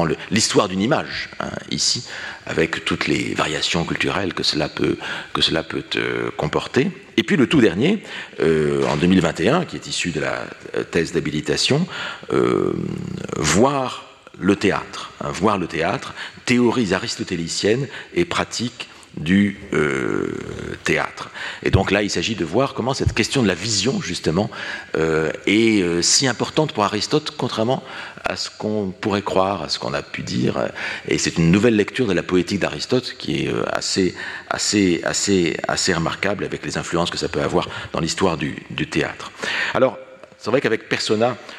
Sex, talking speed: male, 165 wpm